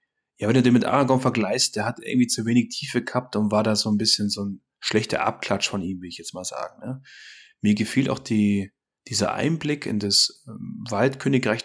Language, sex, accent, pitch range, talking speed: German, male, German, 110-135 Hz, 215 wpm